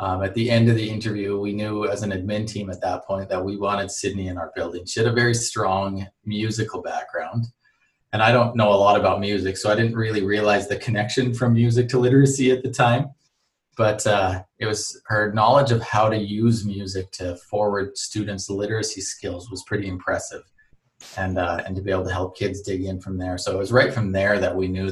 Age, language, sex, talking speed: 30-49, English, male, 225 wpm